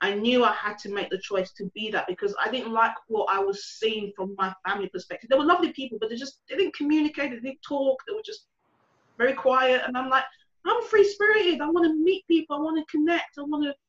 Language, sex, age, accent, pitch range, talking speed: English, female, 30-49, British, 190-275 Hz, 240 wpm